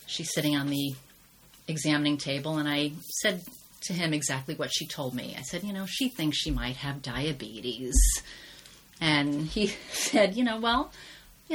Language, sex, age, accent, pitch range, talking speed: English, female, 30-49, American, 150-195 Hz, 170 wpm